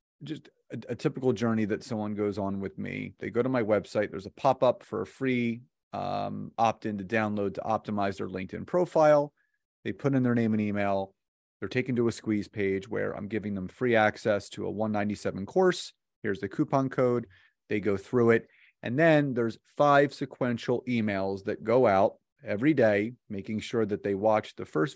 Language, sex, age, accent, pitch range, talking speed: English, male, 30-49, American, 105-130 Hz, 190 wpm